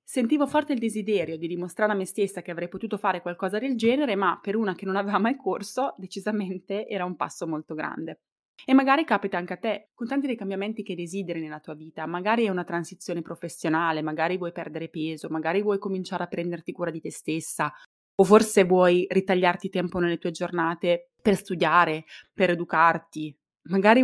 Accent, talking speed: native, 190 wpm